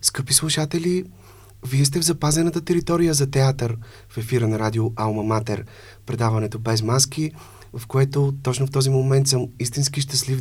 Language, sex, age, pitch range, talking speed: Bulgarian, male, 30-49, 110-130 Hz, 155 wpm